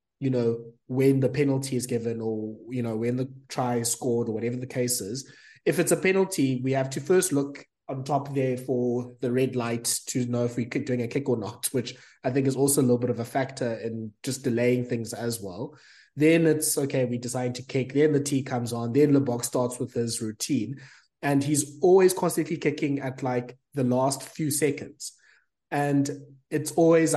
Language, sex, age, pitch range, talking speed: English, male, 20-39, 120-140 Hz, 210 wpm